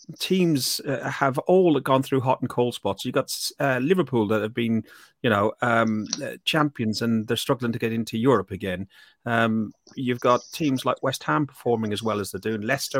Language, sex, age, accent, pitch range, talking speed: English, male, 30-49, British, 110-135 Hz, 200 wpm